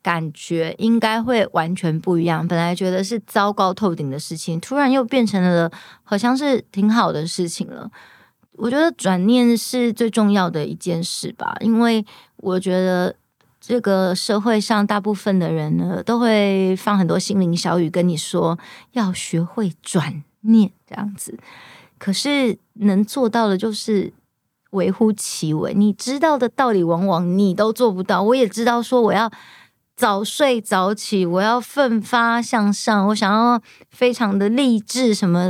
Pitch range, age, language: 180-235 Hz, 30-49, Chinese